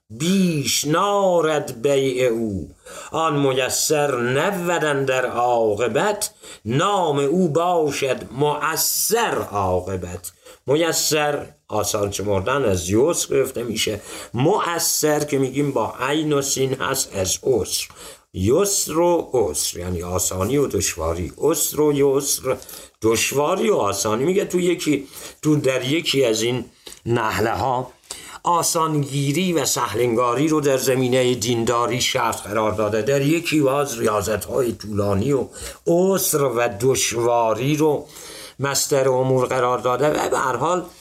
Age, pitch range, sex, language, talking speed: 50-69, 120-155 Hz, male, Persian, 115 wpm